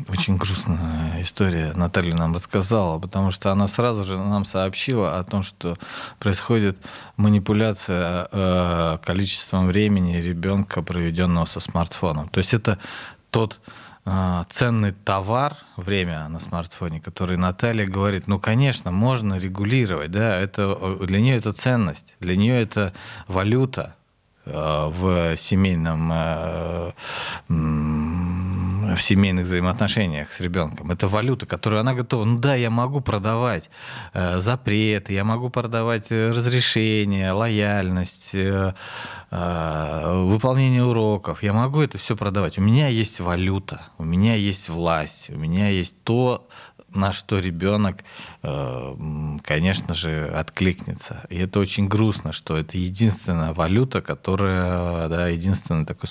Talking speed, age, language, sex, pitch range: 120 wpm, 20-39, Russian, male, 90-110 Hz